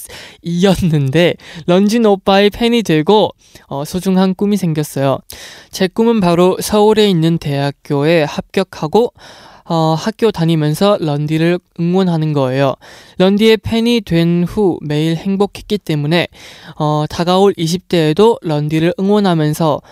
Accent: native